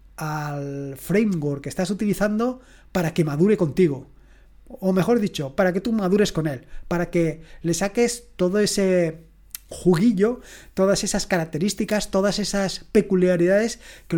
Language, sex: Spanish, male